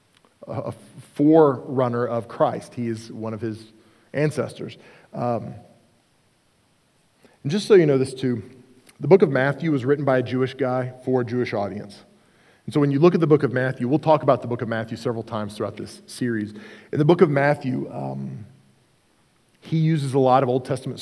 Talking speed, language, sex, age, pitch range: 190 wpm, English, male, 40-59, 120-160 Hz